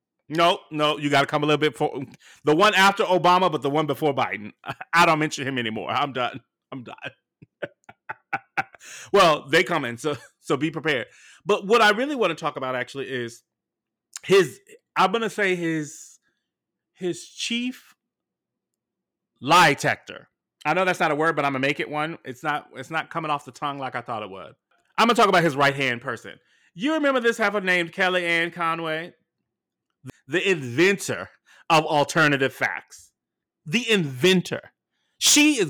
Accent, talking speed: American, 180 wpm